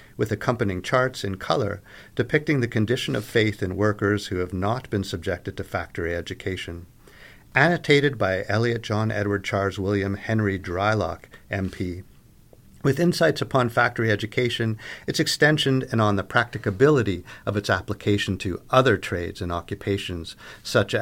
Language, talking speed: English, 145 wpm